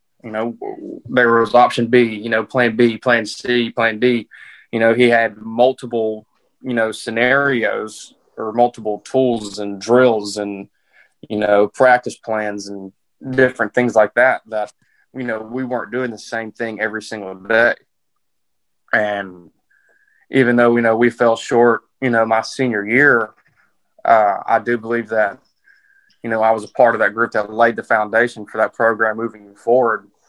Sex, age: male, 20-39